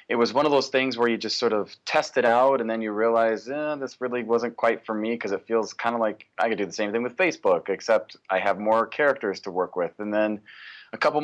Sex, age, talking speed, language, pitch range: male, 30-49, 270 wpm, English, 100-120 Hz